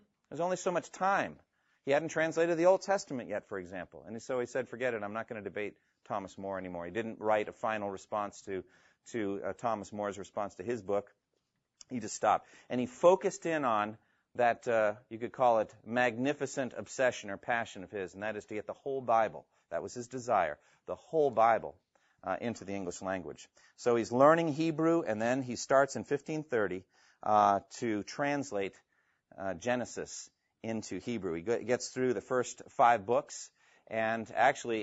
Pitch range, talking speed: 105-135 Hz, 190 wpm